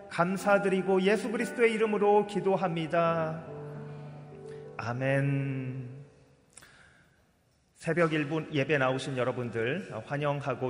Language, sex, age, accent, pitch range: Korean, male, 30-49, native, 120-150 Hz